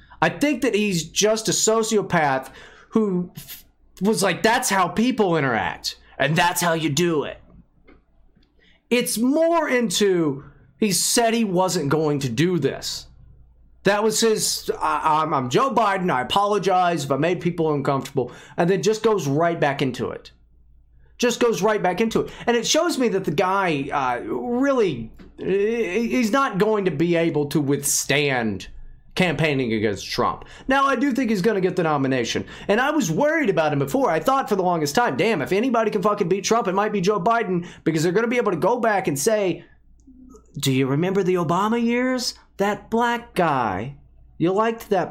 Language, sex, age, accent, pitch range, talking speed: English, male, 30-49, American, 150-225 Hz, 180 wpm